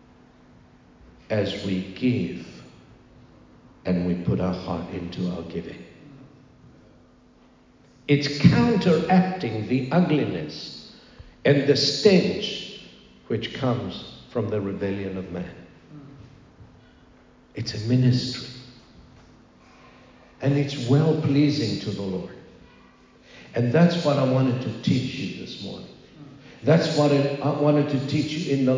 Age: 60-79